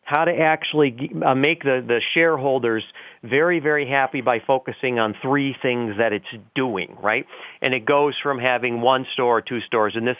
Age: 40-59